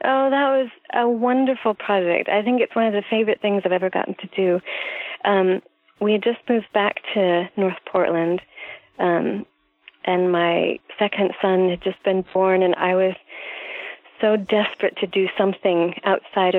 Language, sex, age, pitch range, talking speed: English, female, 30-49, 185-225 Hz, 165 wpm